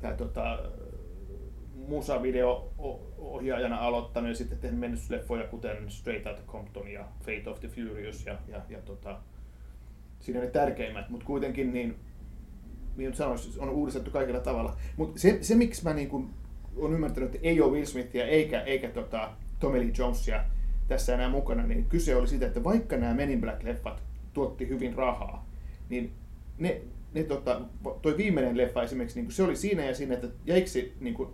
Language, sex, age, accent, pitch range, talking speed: Finnish, male, 30-49, native, 105-150 Hz, 165 wpm